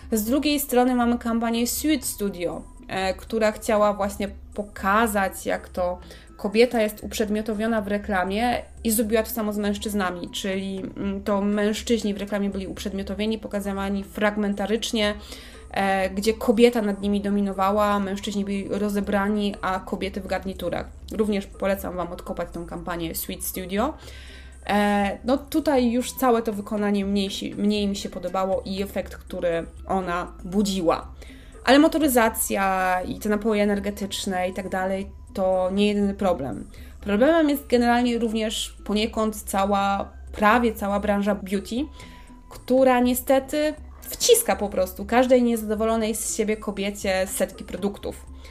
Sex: female